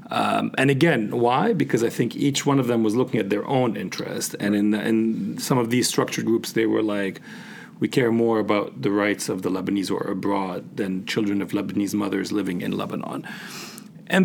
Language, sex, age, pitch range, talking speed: English, male, 40-59, 105-140 Hz, 200 wpm